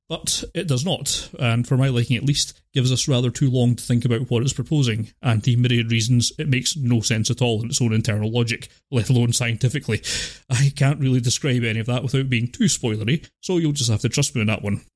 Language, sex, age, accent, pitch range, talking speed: English, male, 30-49, British, 115-140 Hz, 240 wpm